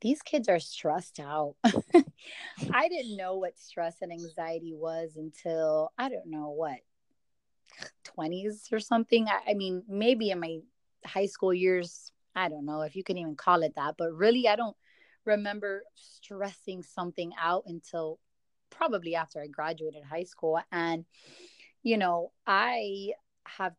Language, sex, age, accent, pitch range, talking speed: English, female, 30-49, American, 165-205 Hz, 150 wpm